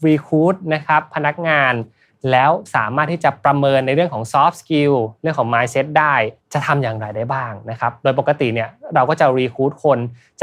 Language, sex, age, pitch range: Thai, male, 20-39, 115-155 Hz